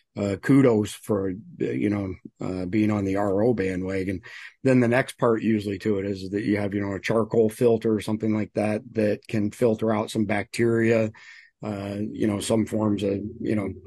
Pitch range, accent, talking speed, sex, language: 105-115 Hz, American, 195 wpm, male, English